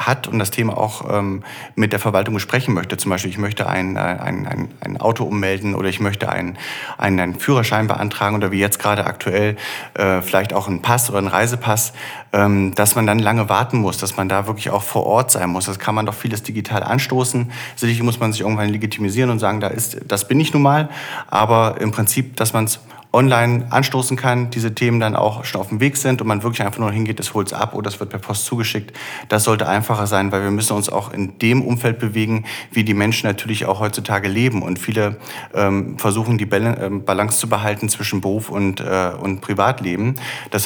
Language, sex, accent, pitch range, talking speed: German, male, German, 100-115 Hz, 220 wpm